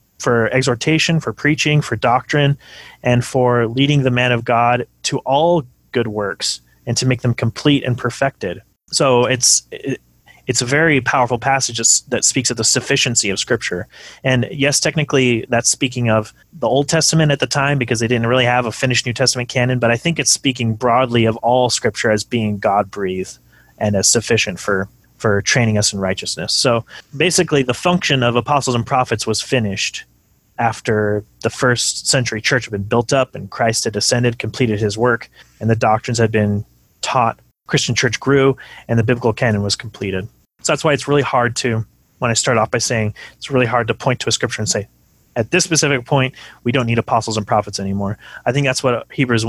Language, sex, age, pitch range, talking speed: English, male, 30-49, 110-130 Hz, 195 wpm